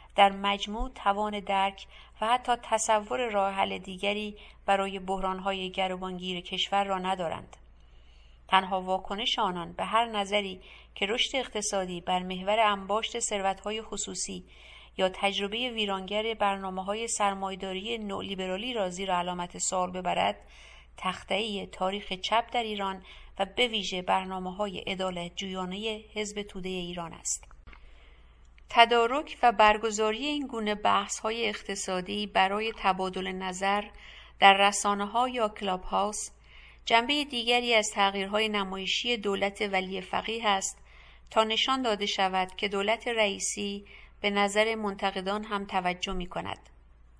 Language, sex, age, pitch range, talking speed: English, female, 50-69, 185-210 Hz, 120 wpm